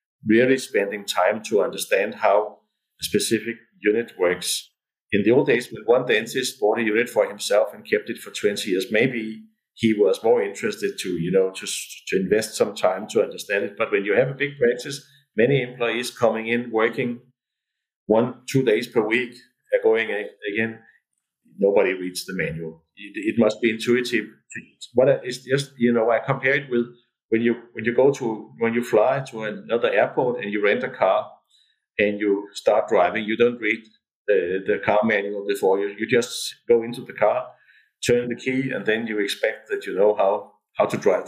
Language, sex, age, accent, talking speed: German, male, 50-69, Danish, 190 wpm